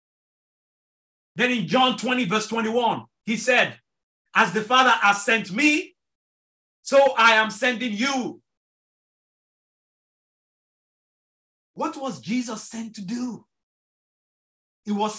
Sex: male